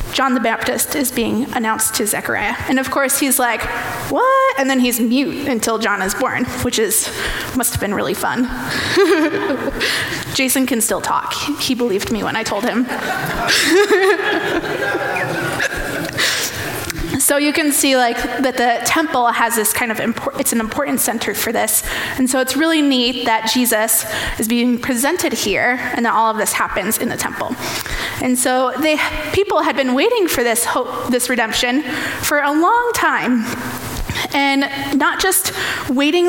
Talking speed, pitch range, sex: 165 wpm, 240-300 Hz, female